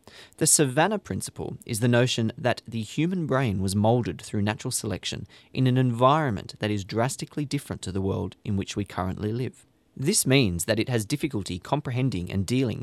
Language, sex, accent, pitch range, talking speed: English, male, Australian, 100-135 Hz, 180 wpm